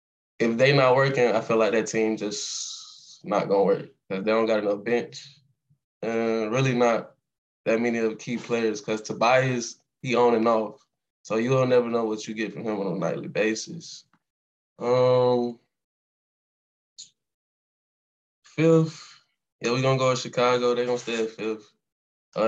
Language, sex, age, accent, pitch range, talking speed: English, male, 10-29, American, 110-125 Hz, 170 wpm